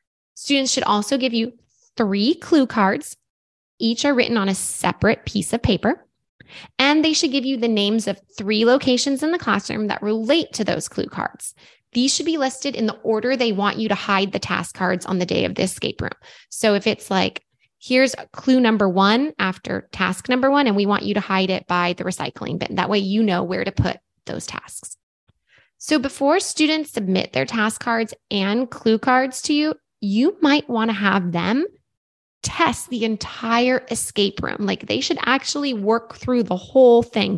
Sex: female